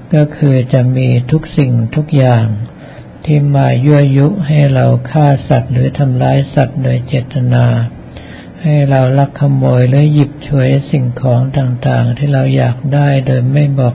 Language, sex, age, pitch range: Thai, male, 60-79, 125-140 Hz